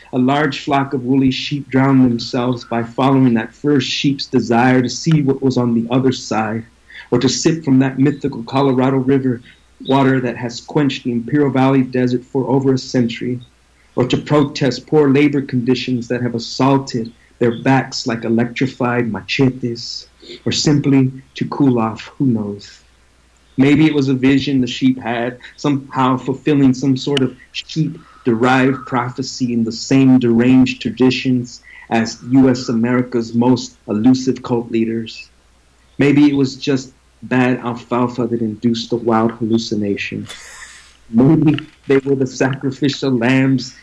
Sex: male